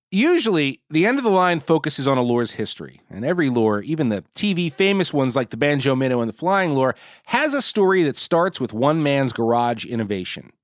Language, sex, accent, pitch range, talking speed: English, male, American, 120-195 Hz, 210 wpm